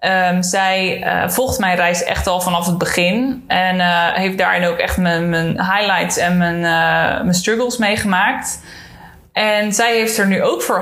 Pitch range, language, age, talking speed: 175-210 Hz, Dutch, 20-39, 185 wpm